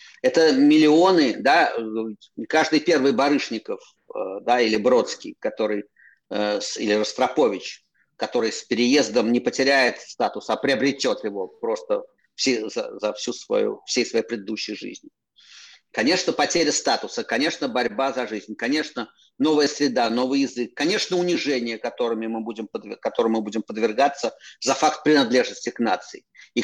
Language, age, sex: Russian, 50-69, male